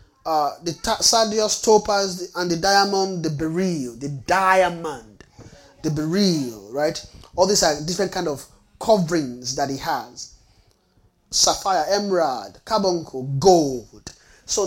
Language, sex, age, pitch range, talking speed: English, male, 30-49, 150-195 Hz, 125 wpm